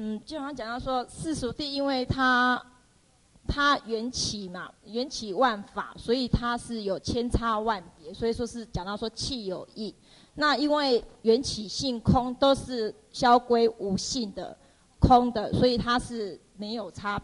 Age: 30-49